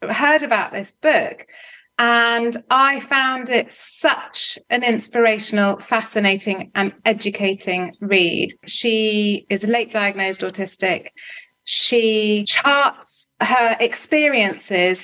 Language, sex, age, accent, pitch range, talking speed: English, female, 30-49, British, 195-240 Hz, 100 wpm